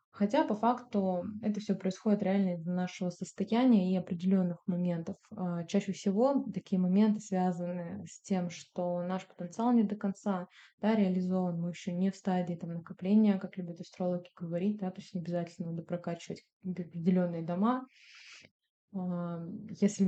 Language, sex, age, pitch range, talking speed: Russian, female, 20-39, 180-215 Hz, 145 wpm